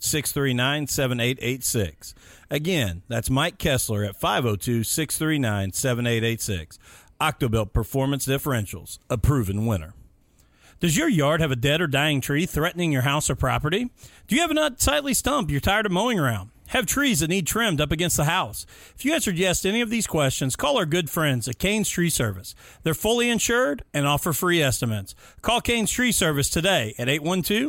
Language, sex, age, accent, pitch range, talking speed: English, male, 40-59, American, 125-185 Hz, 185 wpm